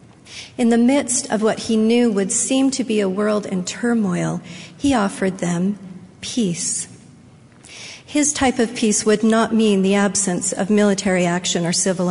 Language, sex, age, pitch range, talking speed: English, female, 50-69, 190-235 Hz, 165 wpm